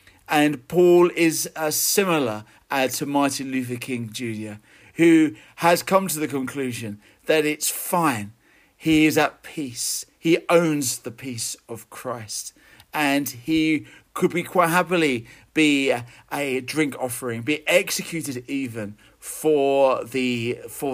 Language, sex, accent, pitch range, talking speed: English, male, British, 120-155 Hz, 130 wpm